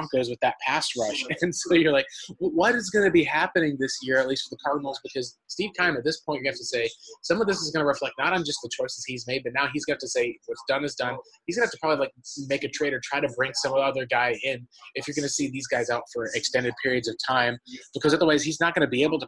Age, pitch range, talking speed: 20-39, 125-155 Hz, 300 wpm